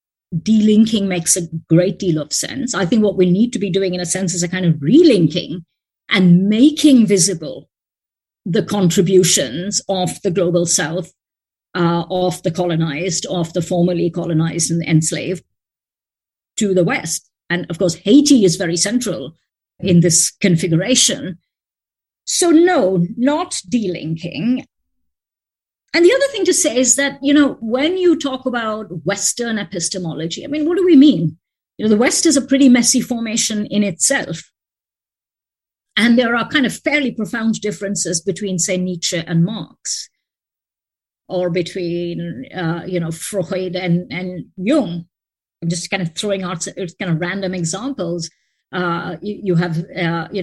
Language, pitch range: English, 175-230 Hz